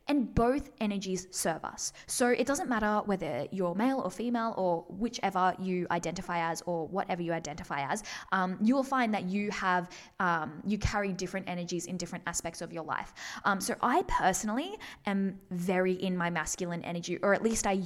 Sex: female